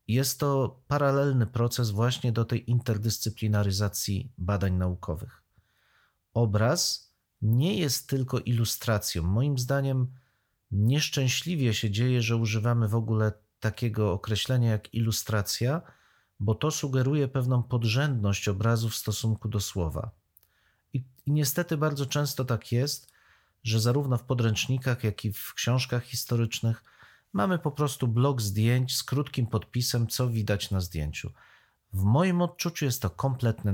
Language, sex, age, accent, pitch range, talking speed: Polish, male, 40-59, native, 105-135 Hz, 125 wpm